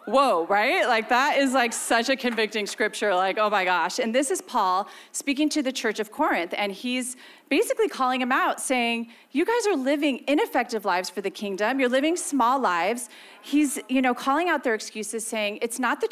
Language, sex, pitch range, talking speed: English, female, 205-280 Hz, 205 wpm